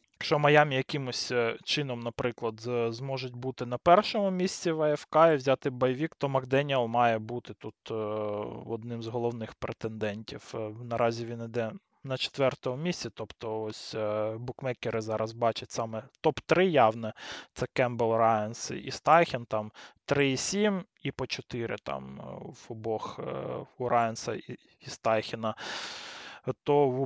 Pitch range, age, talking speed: 115-160 Hz, 20-39, 125 wpm